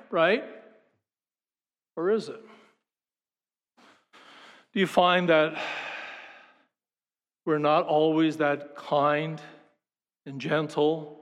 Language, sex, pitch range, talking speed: English, male, 150-215 Hz, 80 wpm